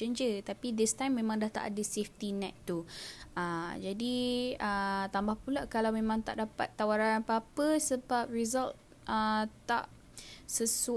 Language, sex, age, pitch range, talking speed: Malay, female, 10-29, 195-235 Hz, 150 wpm